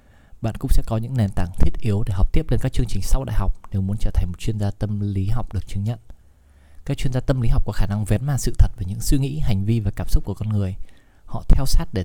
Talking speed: 305 wpm